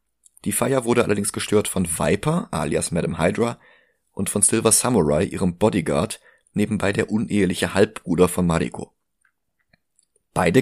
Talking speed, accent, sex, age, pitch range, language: 130 wpm, German, male, 30-49, 85-105 Hz, German